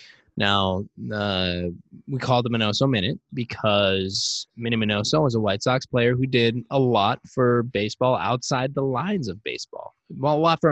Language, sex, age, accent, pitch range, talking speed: English, male, 20-39, American, 100-125 Hz, 170 wpm